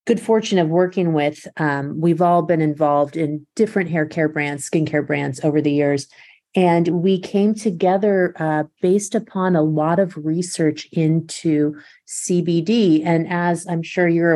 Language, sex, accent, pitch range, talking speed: English, female, American, 150-175 Hz, 160 wpm